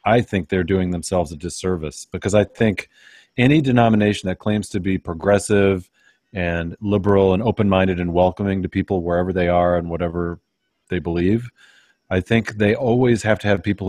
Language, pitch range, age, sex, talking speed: English, 95-115 Hz, 40-59, male, 175 wpm